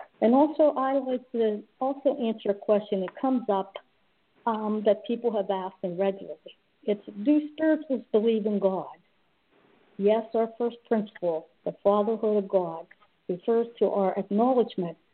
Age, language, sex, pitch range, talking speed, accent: 60-79, English, female, 195-235 Hz, 150 wpm, American